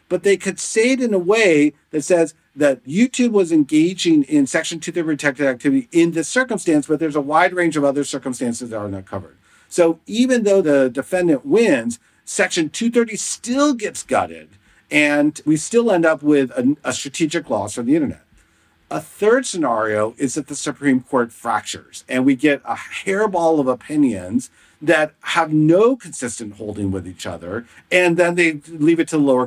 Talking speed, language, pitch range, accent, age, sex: 185 wpm, English, 140-220 Hz, American, 50-69, male